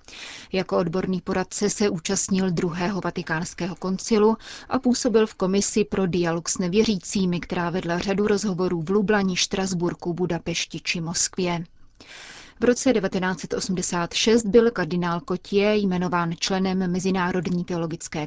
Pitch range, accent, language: 180-200 Hz, native, Czech